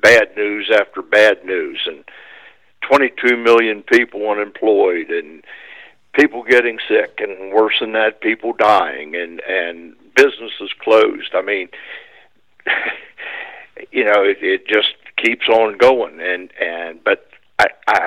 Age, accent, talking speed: 60-79, American, 125 wpm